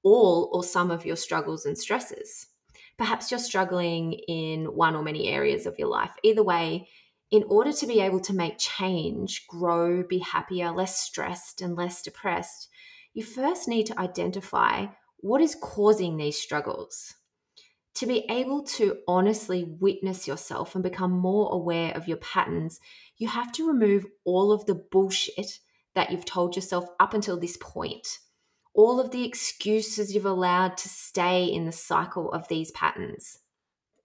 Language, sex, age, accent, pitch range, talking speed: English, female, 20-39, Australian, 180-240 Hz, 160 wpm